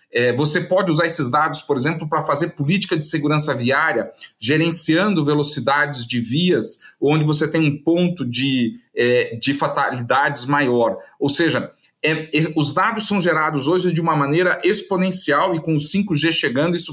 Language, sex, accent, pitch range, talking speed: Portuguese, male, Brazilian, 140-170 Hz, 150 wpm